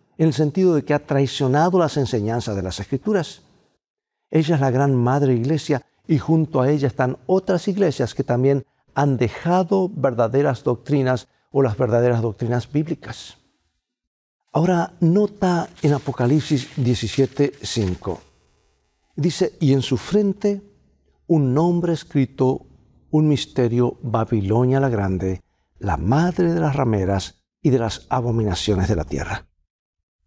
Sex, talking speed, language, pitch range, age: male, 130 wpm, Spanish, 115-160 Hz, 60-79